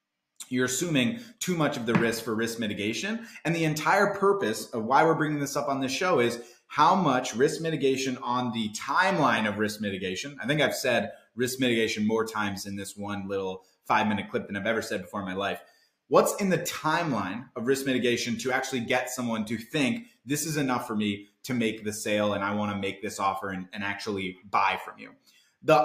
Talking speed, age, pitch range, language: 215 wpm, 30-49, 110-155 Hz, English